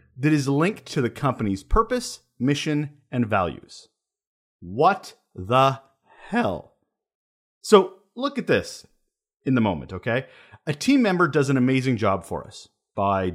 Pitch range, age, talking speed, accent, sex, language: 110-170 Hz, 30-49, 140 wpm, American, male, English